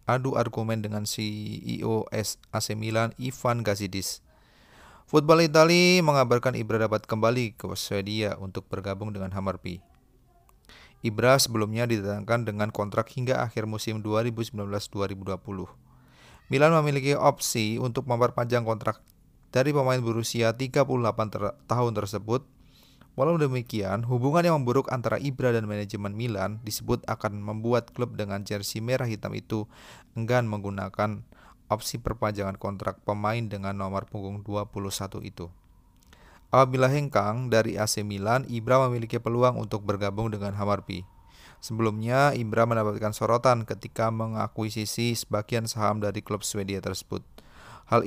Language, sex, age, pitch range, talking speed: Indonesian, male, 30-49, 105-120 Hz, 120 wpm